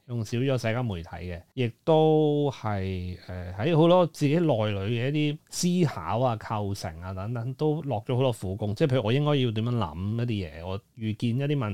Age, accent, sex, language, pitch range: 30-49, native, male, Chinese, 100-135 Hz